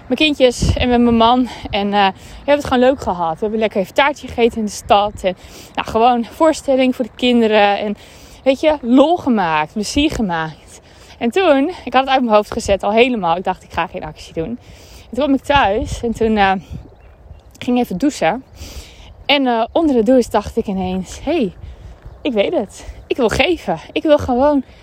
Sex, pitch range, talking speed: female, 200-260 Hz, 205 wpm